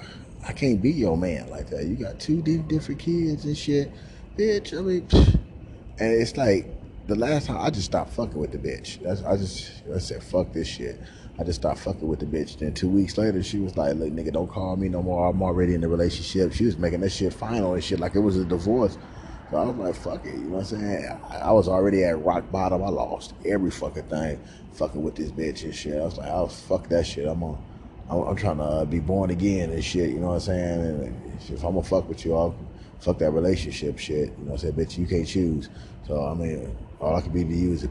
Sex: male